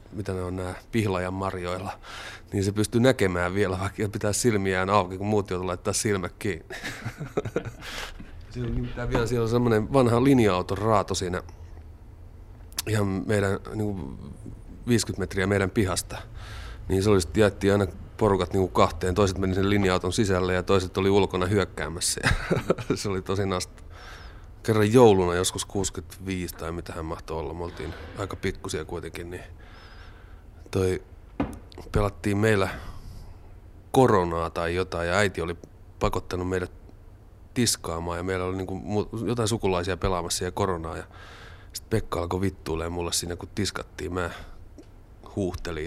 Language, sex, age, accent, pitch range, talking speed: Finnish, male, 30-49, native, 90-105 Hz, 135 wpm